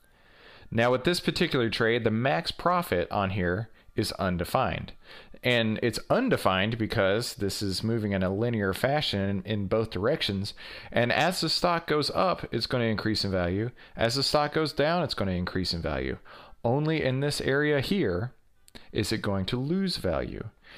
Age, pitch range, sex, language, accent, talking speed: 40-59, 100-145 Hz, male, English, American, 175 wpm